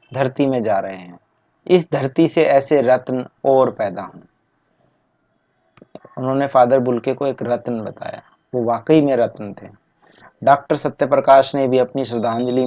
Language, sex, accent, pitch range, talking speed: Hindi, male, native, 125-155 Hz, 145 wpm